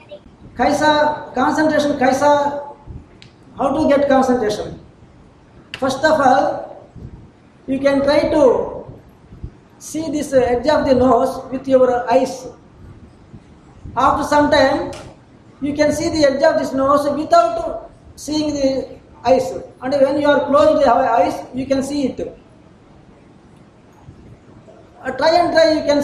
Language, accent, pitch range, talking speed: English, Indian, 255-300 Hz, 125 wpm